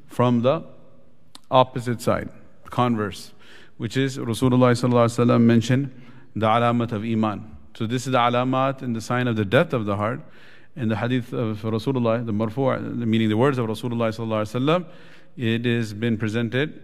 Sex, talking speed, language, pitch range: male, 160 wpm, English, 115-130 Hz